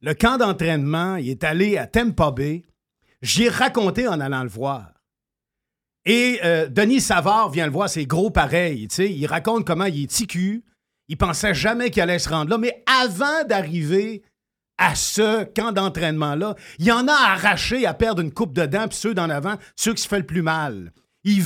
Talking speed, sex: 195 wpm, male